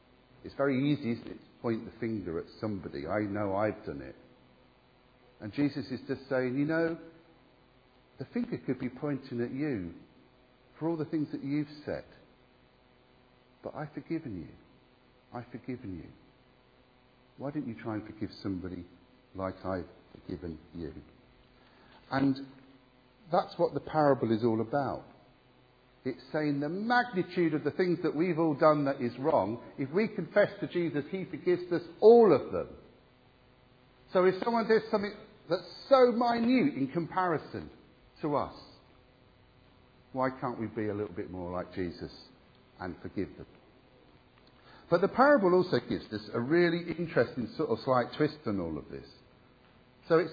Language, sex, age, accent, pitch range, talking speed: English, male, 50-69, British, 115-170 Hz, 155 wpm